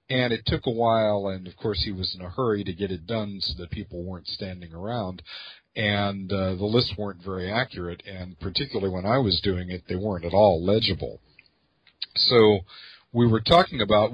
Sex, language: male, English